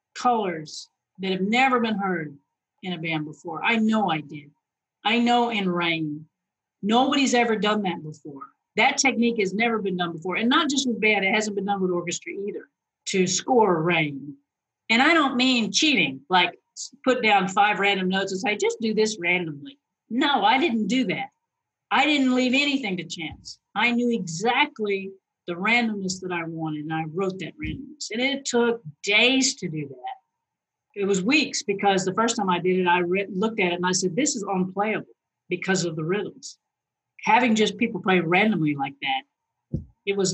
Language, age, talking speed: English, 50-69, 185 wpm